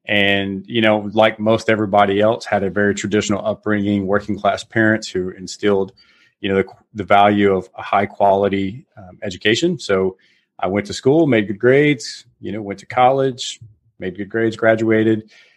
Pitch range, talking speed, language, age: 100-110 Hz, 175 wpm, English, 30-49